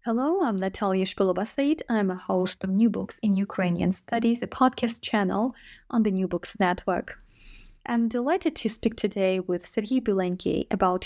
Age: 20-39